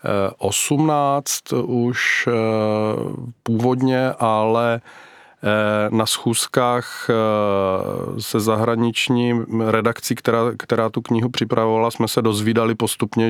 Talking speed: 80 wpm